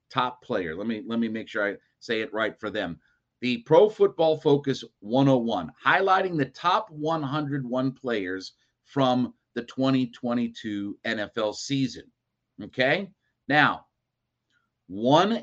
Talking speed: 125 wpm